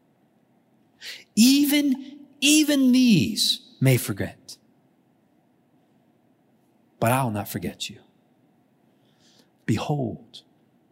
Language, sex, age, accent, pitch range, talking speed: English, male, 40-59, American, 125-185 Hz, 65 wpm